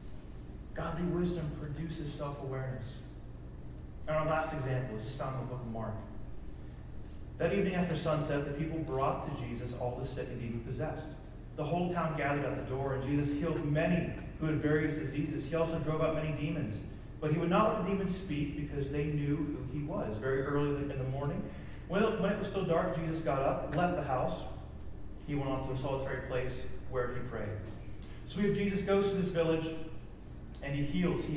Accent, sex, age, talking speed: American, male, 40-59, 195 wpm